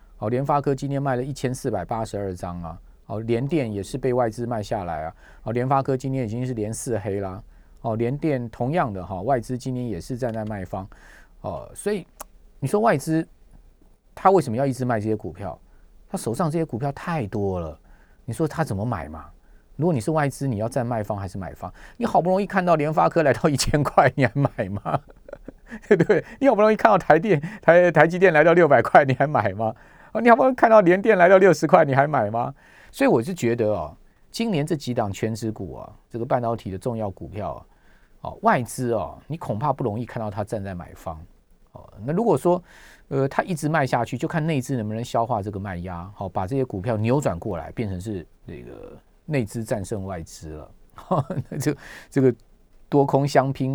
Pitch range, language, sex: 105-150 Hz, Chinese, male